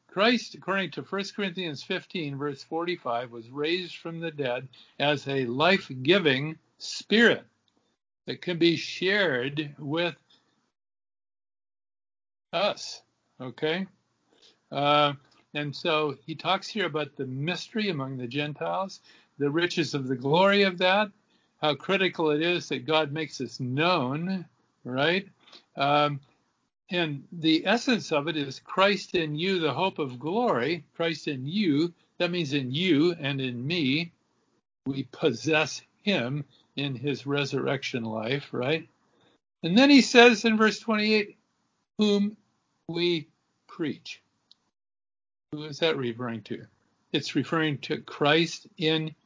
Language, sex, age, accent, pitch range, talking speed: English, male, 50-69, American, 140-185 Hz, 130 wpm